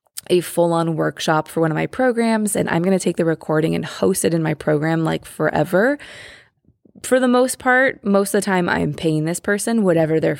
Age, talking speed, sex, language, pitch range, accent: 20-39, 215 wpm, female, English, 165-210 Hz, American